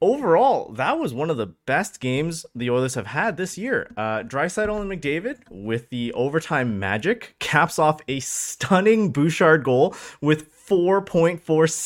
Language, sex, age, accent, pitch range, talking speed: English, male, 20-39, American, 115-185 Hz, 150 wpm